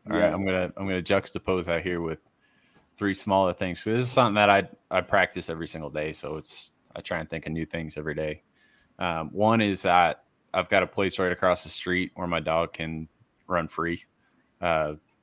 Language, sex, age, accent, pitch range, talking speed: English, male, 20-39, American, 85-100 Hz, 215 wpm